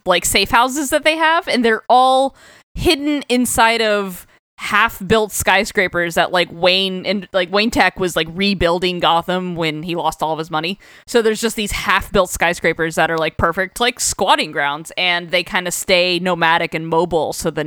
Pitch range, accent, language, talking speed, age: 170-215 Hz, American, English, 185 wpm, 20-39